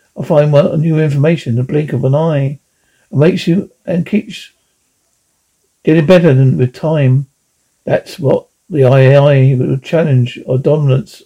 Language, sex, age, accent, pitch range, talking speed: English, male, 60-79, British, 130-165 Hz, 150 wpm